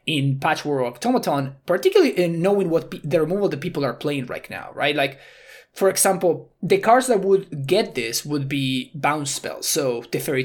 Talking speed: 190 wpm